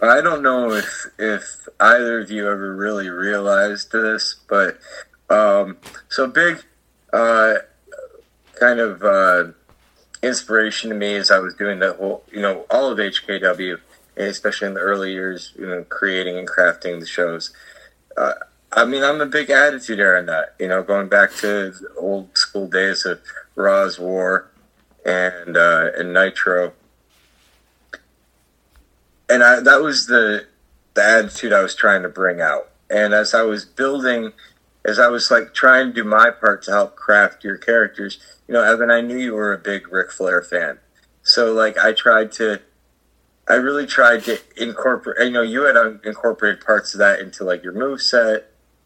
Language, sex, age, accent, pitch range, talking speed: English, male, 30-49, American, 95-115 Hz, 170 wpm